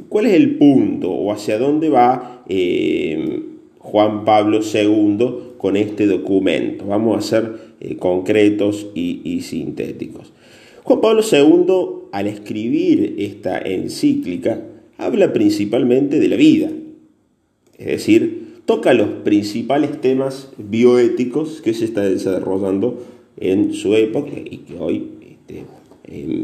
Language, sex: Spanish, male